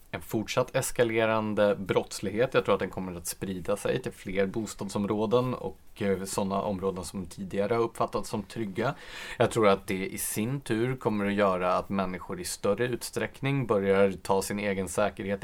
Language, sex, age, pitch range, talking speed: Swedish, male, 30-49, 95-115 Hz, 170 wpm